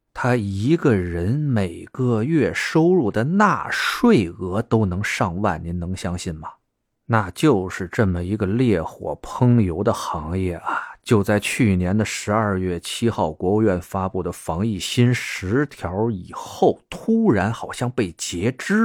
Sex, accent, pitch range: male, native, 90-115 Hz